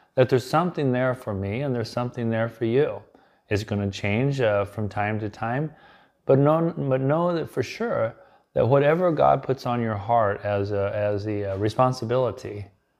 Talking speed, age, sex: 170 wpm, 30-49, male